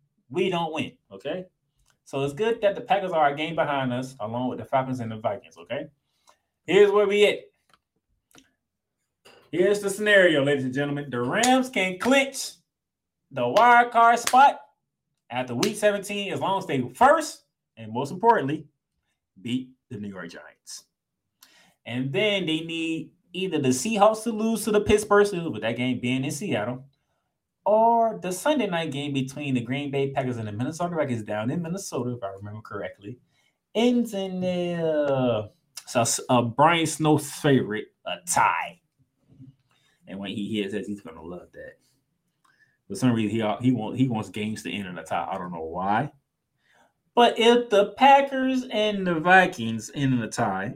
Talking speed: 175 wpm